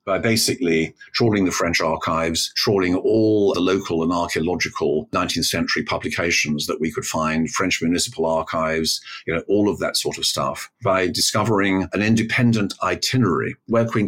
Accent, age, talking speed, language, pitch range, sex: British, 50-69, 160 wpm, English, 80-105 Hz, male